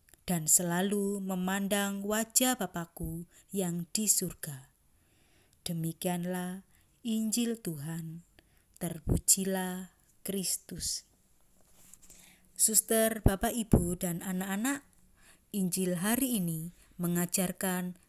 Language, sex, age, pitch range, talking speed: Indonesian, female, 20-39, 180-215 Hz, 75 wpm